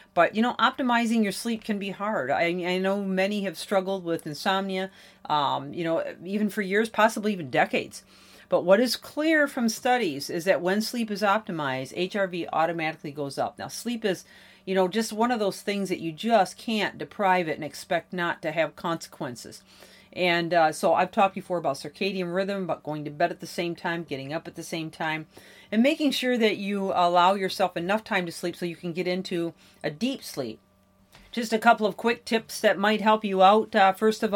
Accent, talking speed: American, 210 wpm